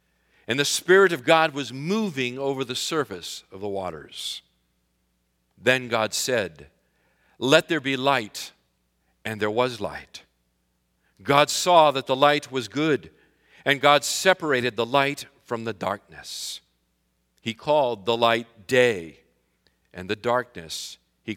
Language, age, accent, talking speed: English, 50-69, American, 135 wpm